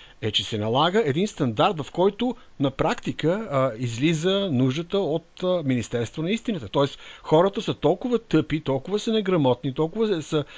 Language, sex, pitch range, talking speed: Bulgarian, male, 120-175 Hz, 155 wpm